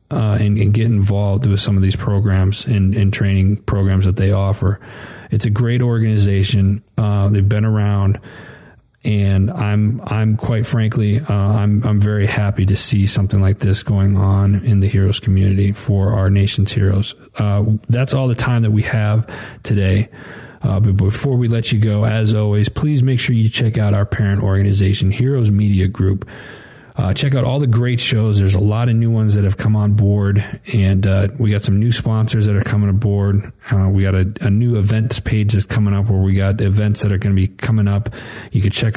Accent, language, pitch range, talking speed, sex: American, English, 100-115 Hz, 205 wpm, male